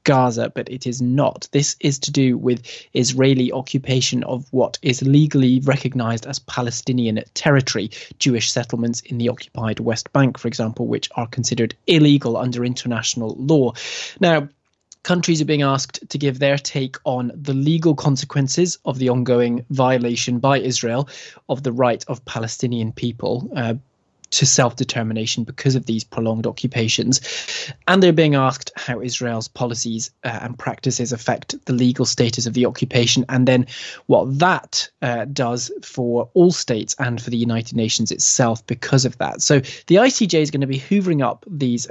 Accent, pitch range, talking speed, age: British, 120-140 Hz, 165 wpm, 20-39